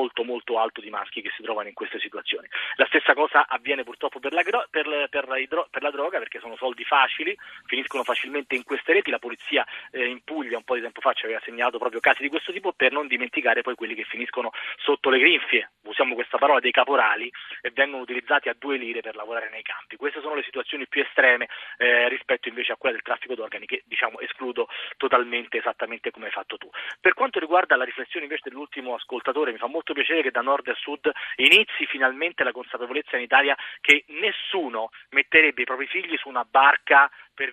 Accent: native